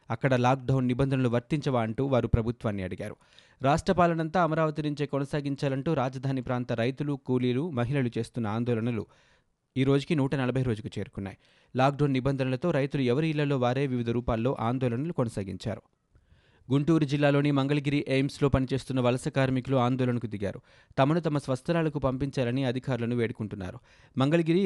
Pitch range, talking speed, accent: 120-145 Hz, 120 wpm, native